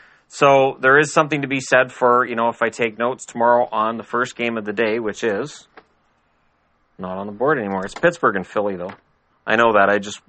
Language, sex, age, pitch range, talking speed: English, male, 30-49, 105-130 Hz, 225 wpm